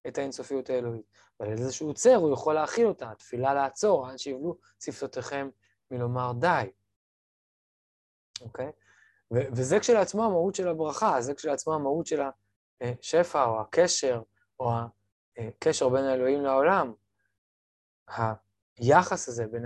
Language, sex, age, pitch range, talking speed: Hebrew, male, 20-39, 115-145 Hz, 120 wpm